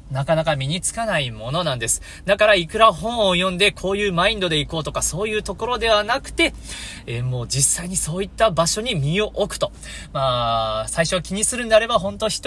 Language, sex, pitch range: Japanese, male, 165-225 Hz